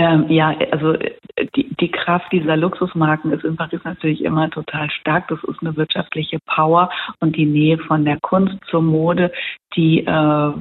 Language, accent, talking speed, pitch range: German, German, 165 wpm, 155-170 Hz